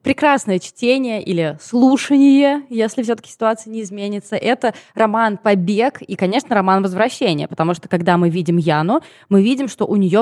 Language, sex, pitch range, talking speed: Russian, female, 175-215 Hz, 160 wpm